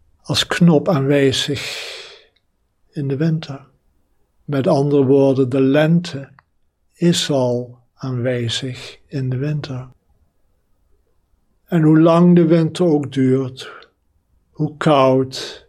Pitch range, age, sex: 115-155 Hz, 60-79, male